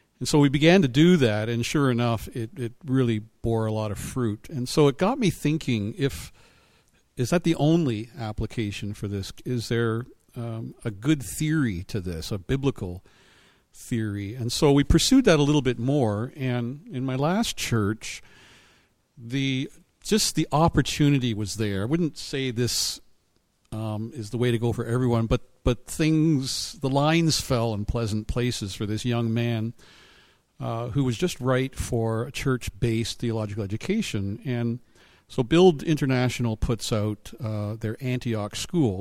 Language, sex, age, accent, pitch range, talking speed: English, male, 50-69, American, 110-135 Hz, 165 wpm